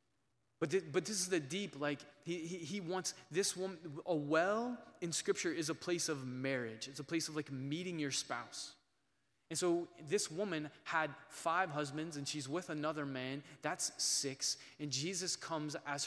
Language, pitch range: English, 135-165 Hz